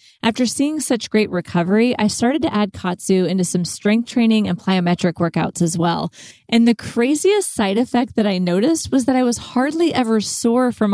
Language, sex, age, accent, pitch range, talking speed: English, female, 20-39, American, 180-225 Hz, 190 wpm